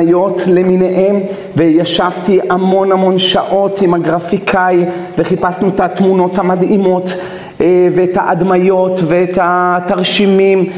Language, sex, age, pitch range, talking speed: Hebrew, male, 40-59, 175-195 Hz, 80 wpm